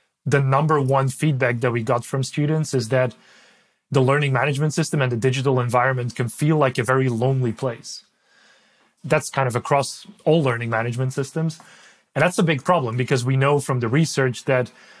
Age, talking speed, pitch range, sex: 30-49, 185 wpm, 125-145 Hz, male